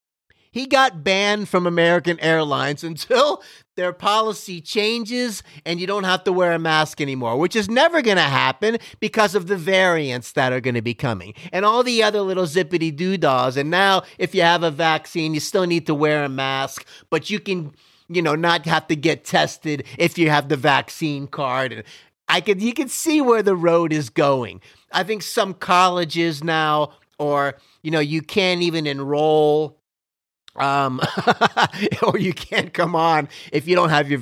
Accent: American